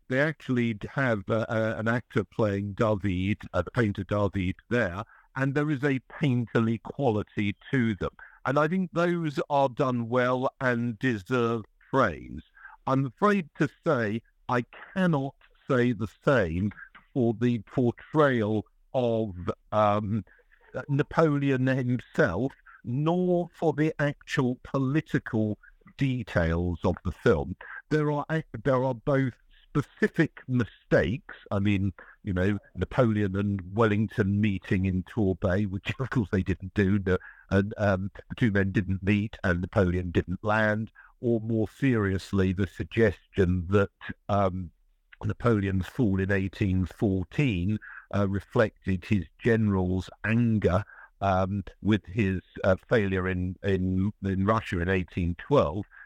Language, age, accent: English, 60-79, British